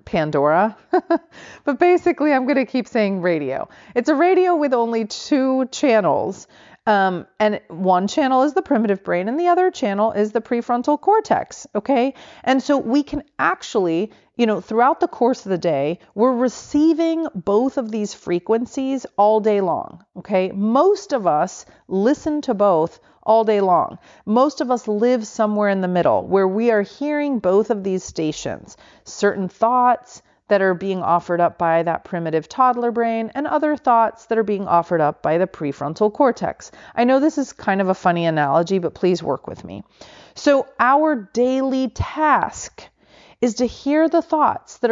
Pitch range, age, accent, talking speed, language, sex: 190-270 Hz, 40-59, American, 170 wpm, English, female